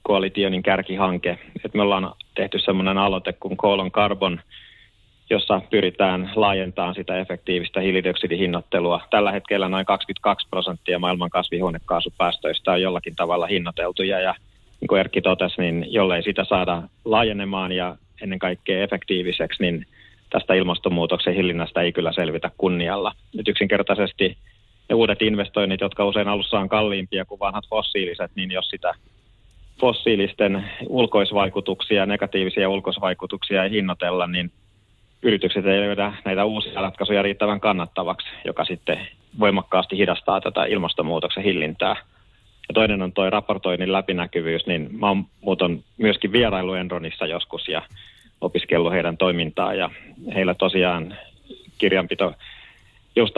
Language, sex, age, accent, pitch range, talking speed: Finnish, male, 30-49, native, 90-105 Hz, 120 wpm